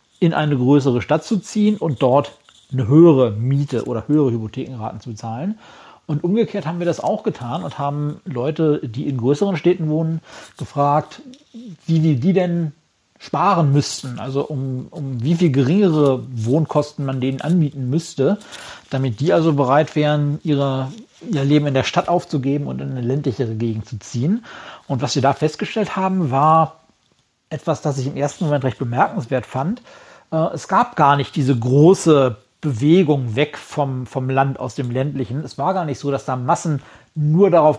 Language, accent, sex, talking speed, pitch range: German, German, male, 170 wpm, 135-170 Hz